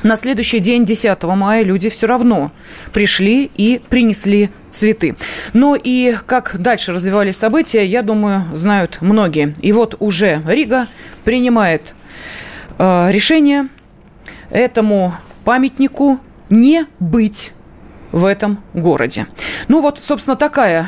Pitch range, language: 195-245 Hz, Russian